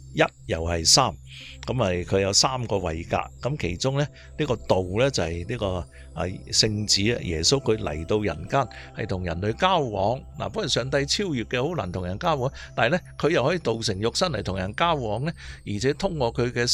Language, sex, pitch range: Chinese, male, 90-125 Hz